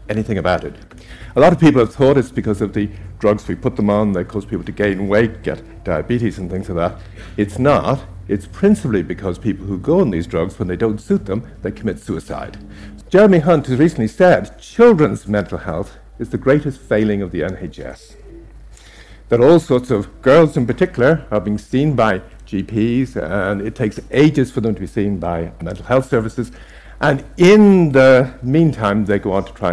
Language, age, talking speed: English, 60-79, 200 wpm